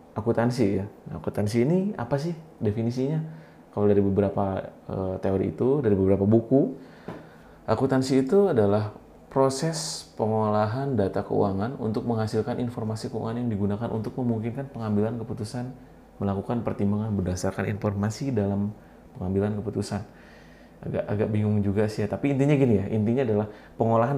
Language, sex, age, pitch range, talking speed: Indonesian, male, 30-49, 100-125 Hz, 130 wpm